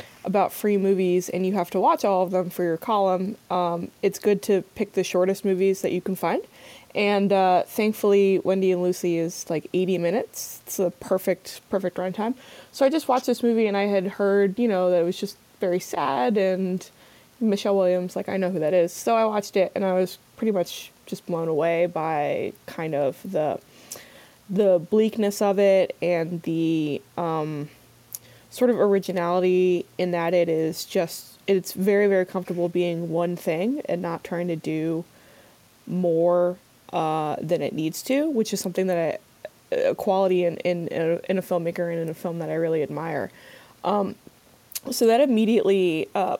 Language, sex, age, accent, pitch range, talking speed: English, female, 20-39, American, 170-200 Hz, 185 wpm